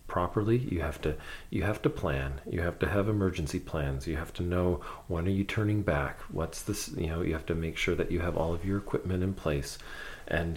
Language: English